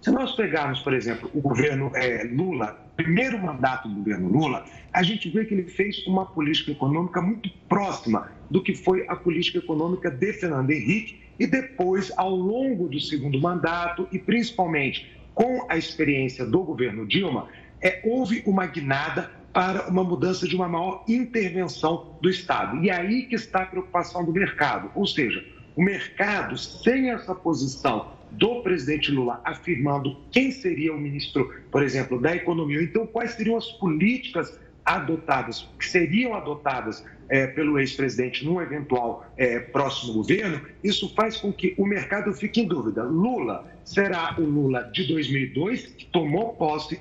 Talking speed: 155 wpm